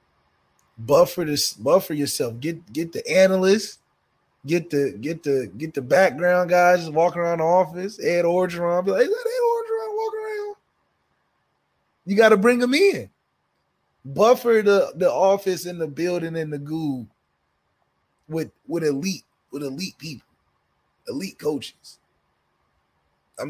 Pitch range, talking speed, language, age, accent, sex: 110-175 Hz, 140 wpm, English, 20-39, American, male